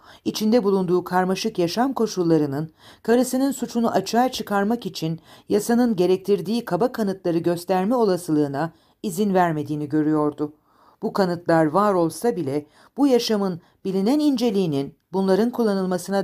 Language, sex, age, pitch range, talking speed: Turkish, female, 50-69, 160-210 Hz, 110 wpm